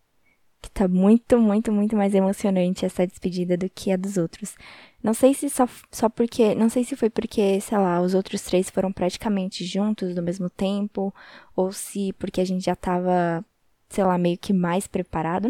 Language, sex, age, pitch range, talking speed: Portuguese, female, 10-29, 180-215 Hz, 190 wpm